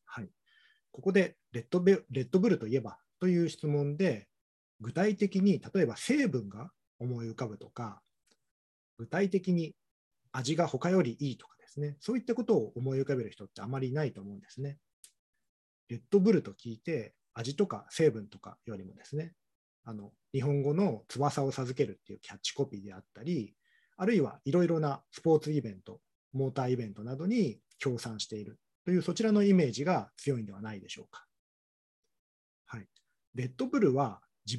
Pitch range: 115-180 Hz